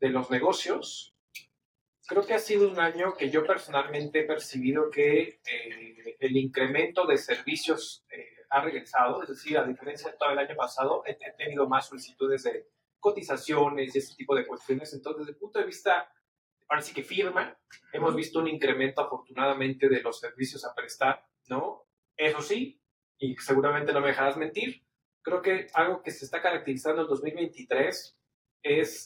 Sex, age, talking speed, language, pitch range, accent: male, 30-49, 165 wpm, English, 140-210 Hz, Mexican